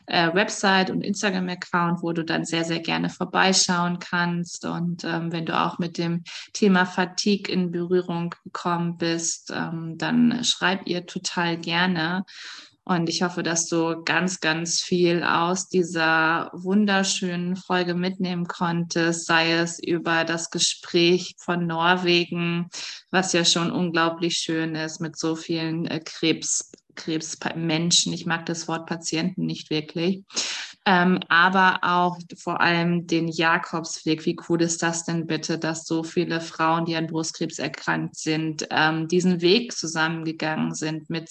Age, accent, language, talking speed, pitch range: 20-39, German, German, 145 wpm, 165-180 Hz